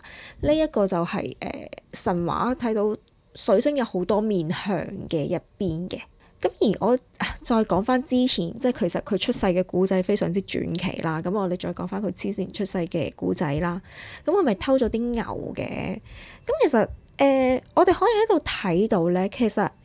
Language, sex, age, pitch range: Chinese, female, 20-39, 185-255 Hz